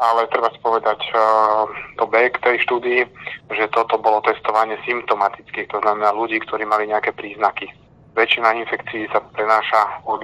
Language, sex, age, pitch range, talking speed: Slovak, male, 30-49, 100-110 Hz, 145 wpm